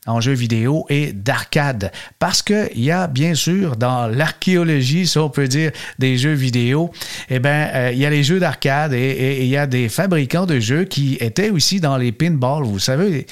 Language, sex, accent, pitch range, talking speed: French, male, Canadian, 125-155 Hz, 205 wpm